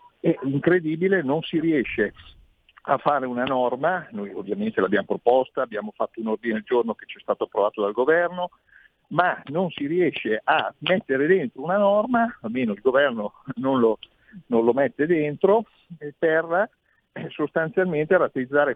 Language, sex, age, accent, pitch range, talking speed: Italian, male, 50-69, native, 125-175 Hz, 150 wpm